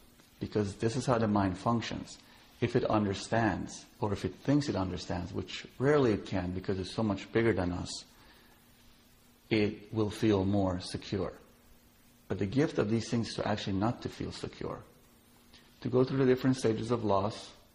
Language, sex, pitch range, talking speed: English, male, 95-115 Hz, 175 wpm